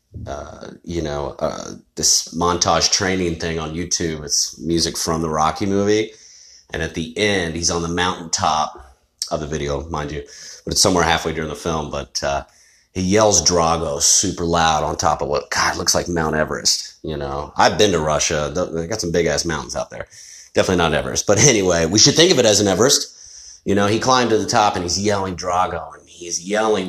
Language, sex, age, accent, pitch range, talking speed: English, male, 30-49, American, 85-100 Hz, 210 wpm